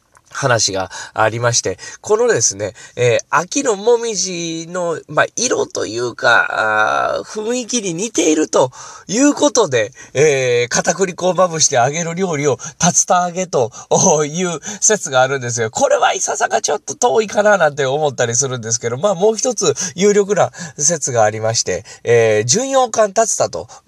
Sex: male